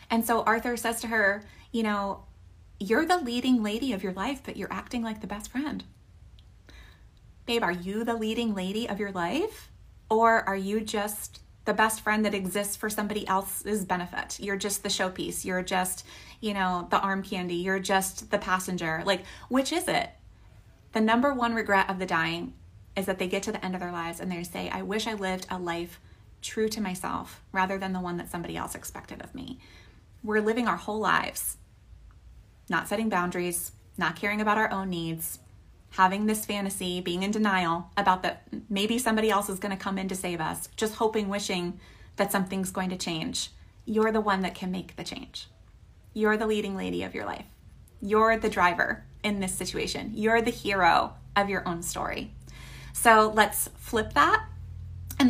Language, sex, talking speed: English, female, 190 wpm